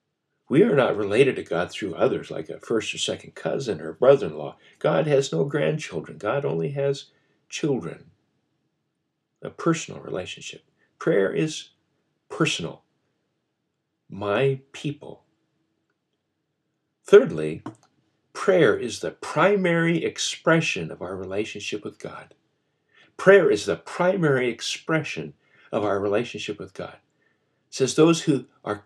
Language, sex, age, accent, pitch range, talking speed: English, male, 60-79, American, 125-185 Hz, 120 wpm